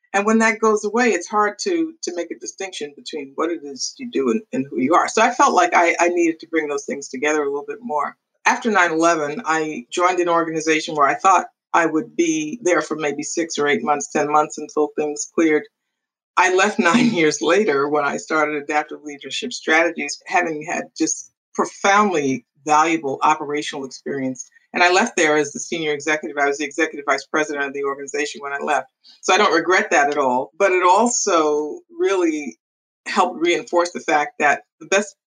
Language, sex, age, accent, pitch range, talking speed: English, female, 50-69, American, 150-220 Hz, 200 wpm